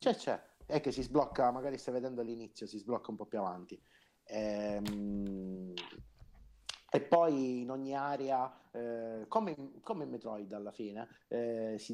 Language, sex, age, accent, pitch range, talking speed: Italian, male, 30-49, native, 105-130 Hz, 160 wpm